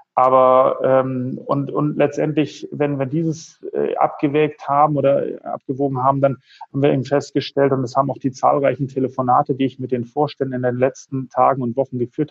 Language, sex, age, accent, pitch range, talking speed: German, male, 30-49, German, 125-140 Hz, 185 wpm